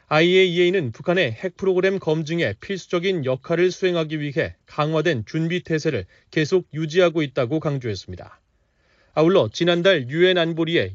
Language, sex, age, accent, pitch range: Korean, male, 30-49, native, 150-180 Hz